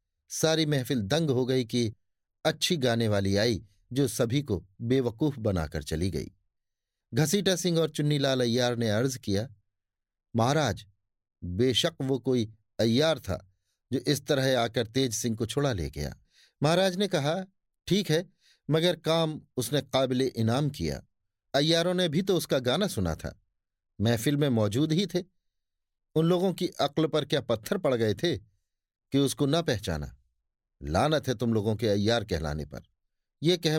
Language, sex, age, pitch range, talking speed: Hindi, male, 50-69, 105-150 Hz, 160 wpm